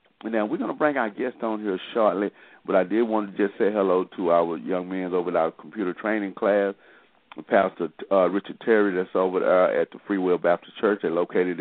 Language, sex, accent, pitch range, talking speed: English, male, American, 80-95 Hz, 215 wpm